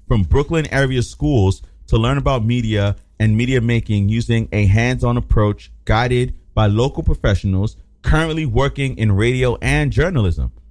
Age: 30-49